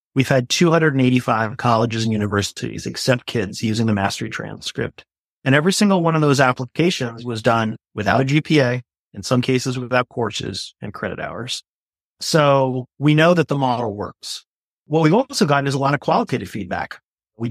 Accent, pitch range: American, 115-145 Hz